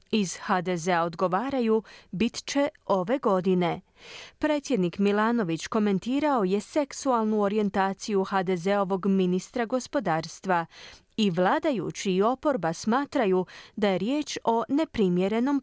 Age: 30-49